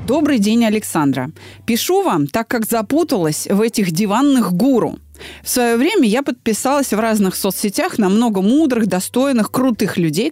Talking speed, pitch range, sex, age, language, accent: 150 wpm, 180-245 Hz, female, 30-49, Russian, native